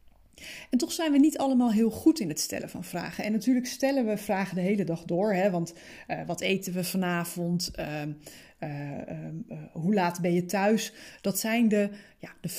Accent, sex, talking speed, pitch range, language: Dutch, female, 195 wpm, 180-235 Hz, Dutch